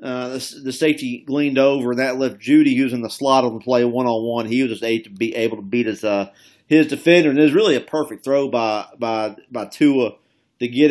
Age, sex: 40-59, male